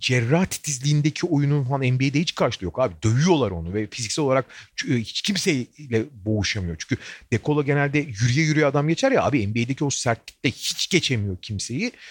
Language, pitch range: Turkish, 120-165 Hz